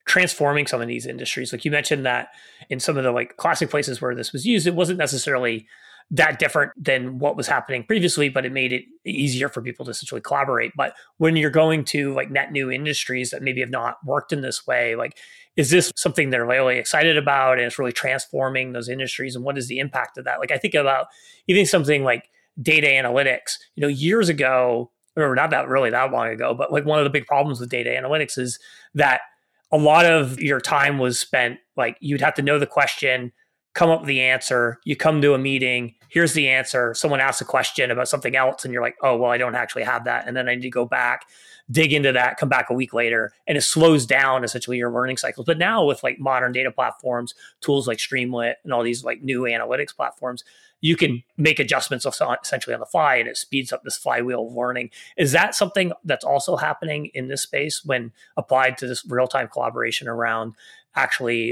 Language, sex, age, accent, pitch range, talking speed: English, male, 30-49, American, 125-150 Hz, 220 wpm